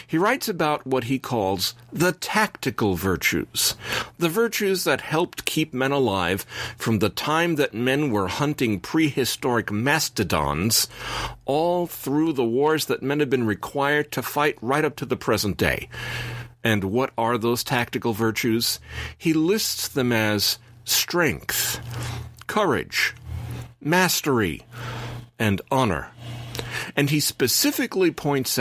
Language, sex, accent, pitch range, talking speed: English, male, American, 110-145 Hz, 130 wpm